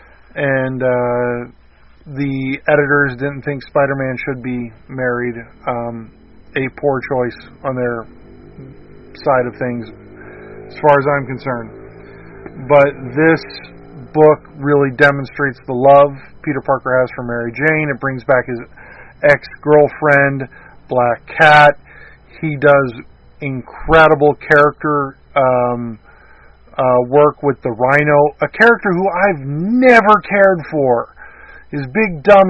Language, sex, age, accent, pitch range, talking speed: English, male, 40-59, American, 130-155 Hz, 120 wpm